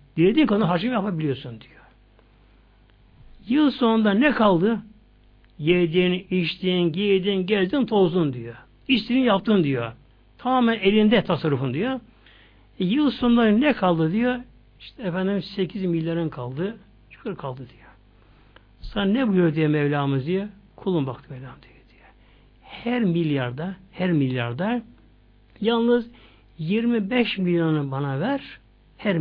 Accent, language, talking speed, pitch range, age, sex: native, Turkish, 115 wpm, 130-215 Hz, 60-79, male